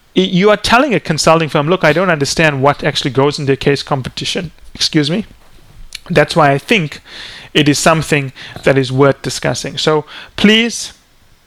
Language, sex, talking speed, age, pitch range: English, male, 165 wpm, 30-49, 140-170 Hz